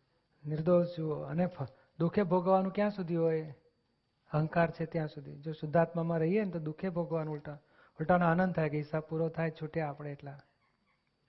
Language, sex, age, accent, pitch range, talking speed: Gujarati, male, 40-59, native, 150-170 Hz, 160 wpm